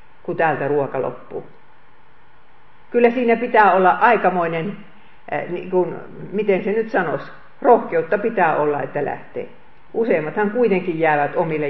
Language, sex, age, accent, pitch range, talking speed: Finnish, female, 50-69, native, 175-220 Hz, 125 wpm